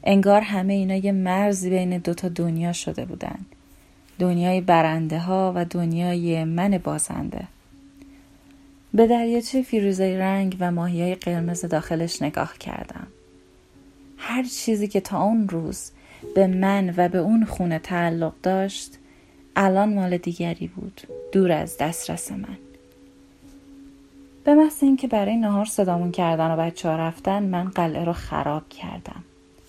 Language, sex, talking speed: Persian, female, 130 wpm